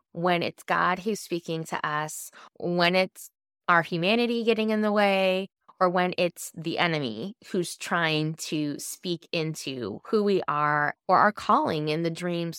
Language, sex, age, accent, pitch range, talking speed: English, female, 20-39, American, 150-190 Hz, 160 wpm